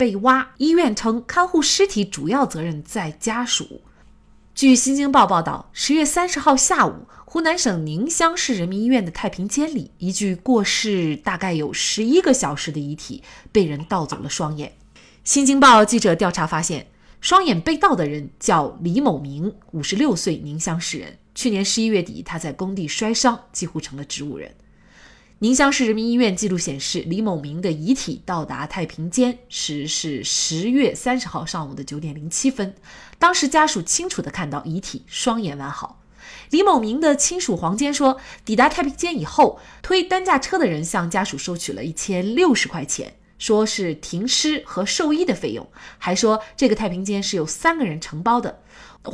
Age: 20-39